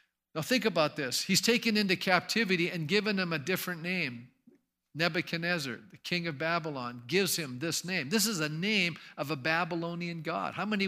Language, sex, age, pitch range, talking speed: English, male, 50-69, 155-195 Hz, 180 wpm